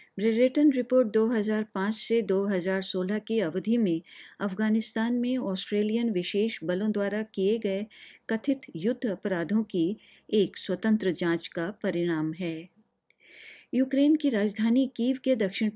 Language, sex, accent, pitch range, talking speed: English, female, Indian, 180-225 Hz, 125 wpm